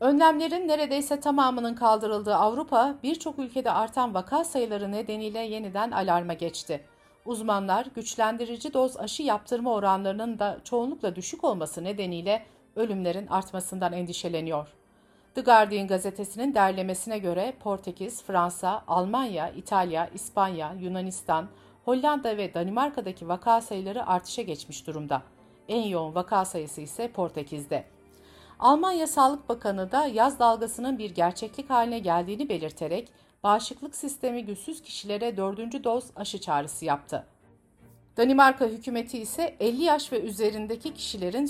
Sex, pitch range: female, 185-245 Hz